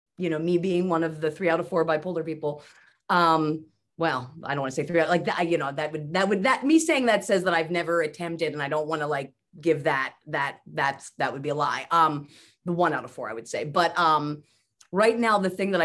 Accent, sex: American, female